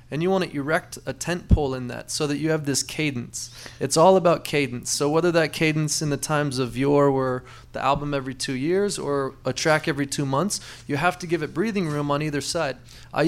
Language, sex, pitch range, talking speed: English, male, 135-165 Hz, 235 wpm